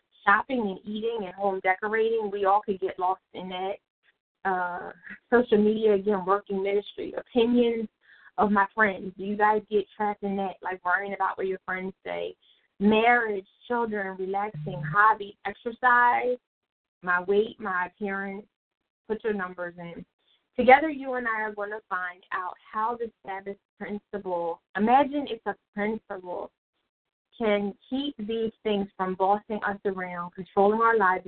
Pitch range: 185-220 Hz